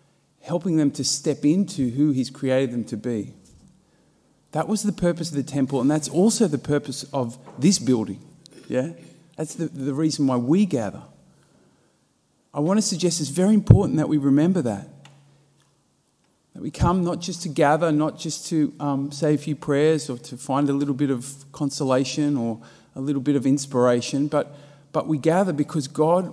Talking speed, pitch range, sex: 180 wpm, 130-155 Hz, male